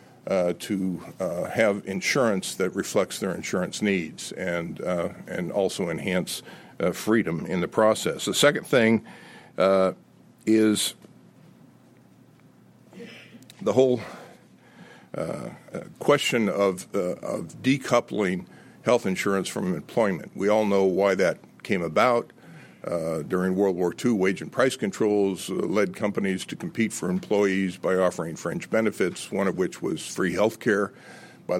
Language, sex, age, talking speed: English, male, 60-79, 135 wpm